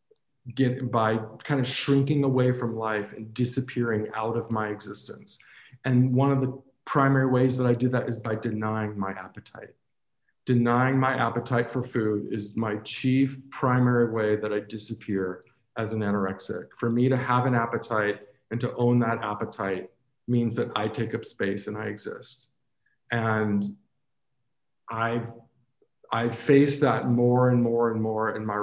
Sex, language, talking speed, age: male, English, 165 wpm, 40-59